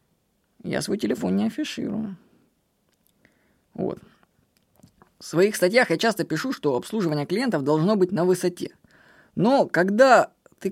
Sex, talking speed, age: female, 125 wpm, 20-39